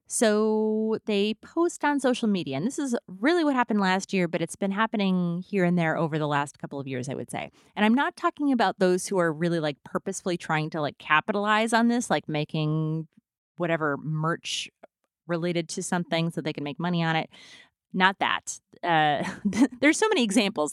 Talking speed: 195 wpm